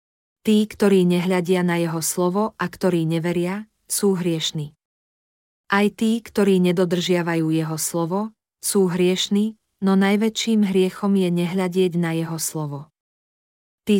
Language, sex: Slovak, female